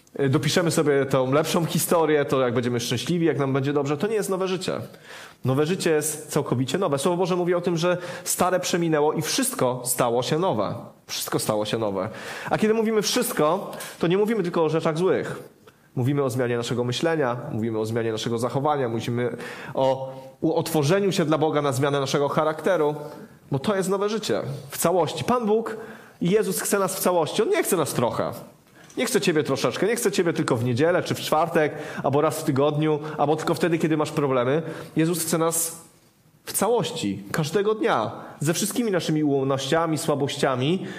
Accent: native